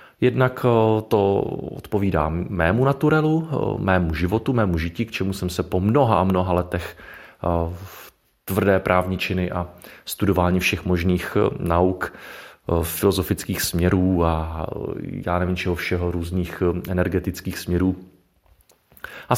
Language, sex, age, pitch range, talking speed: Czech, male, 40-59, 85-105 Hz, 120 wpm